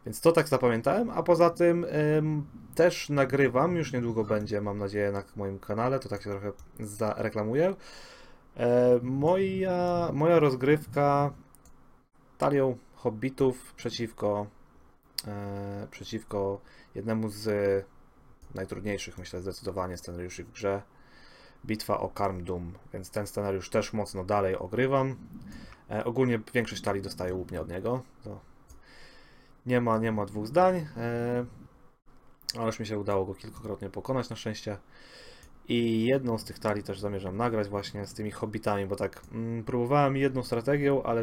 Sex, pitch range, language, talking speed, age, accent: male, 100-130 Hz, Polish, 140 wpm, 30-49, native